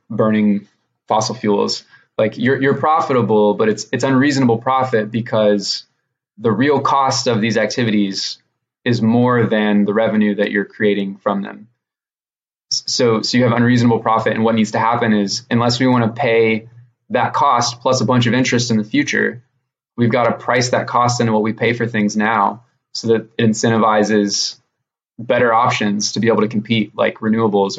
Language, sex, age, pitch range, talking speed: English, male, 20-39, 105-120 Hz, 175 wpm